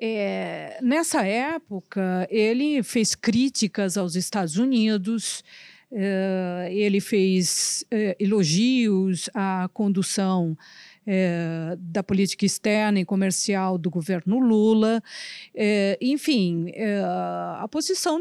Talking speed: 80 wpm